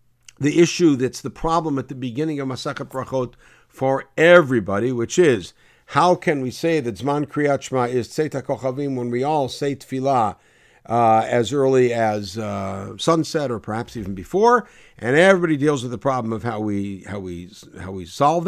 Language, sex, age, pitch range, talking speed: English, male, 60-79, 120-165 Hz, 170 wpm